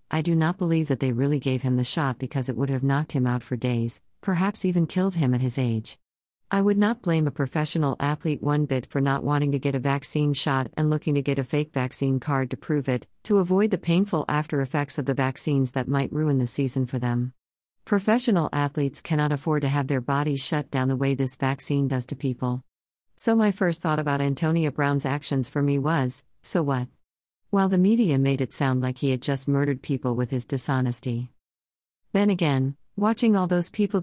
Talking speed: 215 wpm